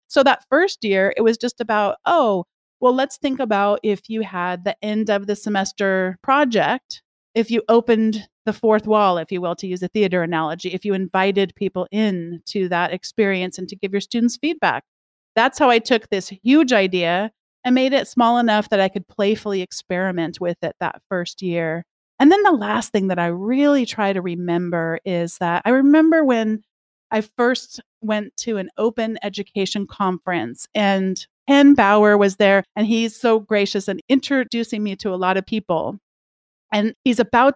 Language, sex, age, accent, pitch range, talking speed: English, female, 40-59, American, 190-245 Hz, 185 wpm